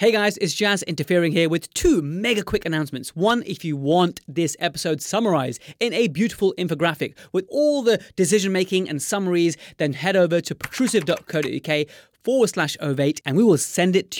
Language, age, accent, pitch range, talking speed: English, 30-49, British, 150-200 Hz, 180 wpm